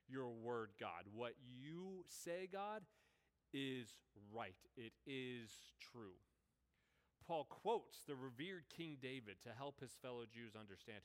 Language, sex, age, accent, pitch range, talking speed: English, male, 30-49, American, 110-160 Hz, 130 wpm